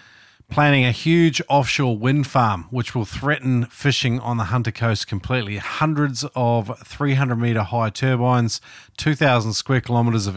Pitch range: 110-130 Hz